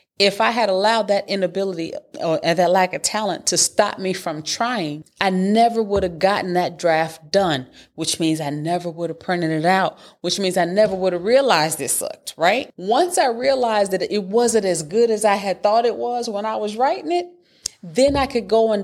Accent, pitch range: American, 175-215 Hz